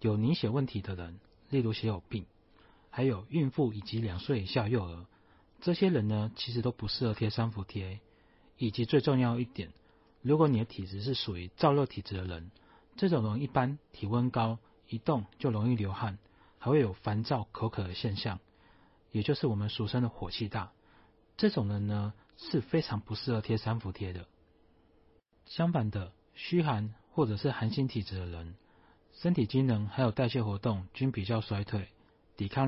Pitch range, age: 100-125 Hz, 30-49